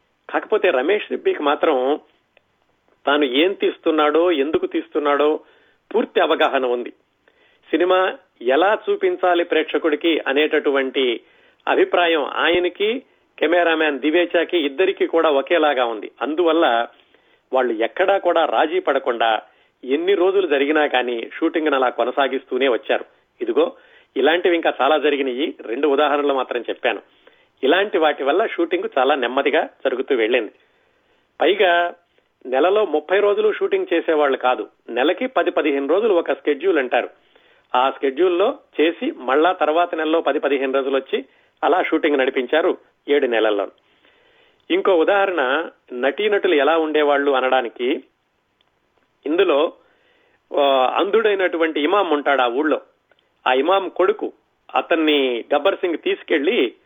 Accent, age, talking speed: native, 40-59, 110 wpm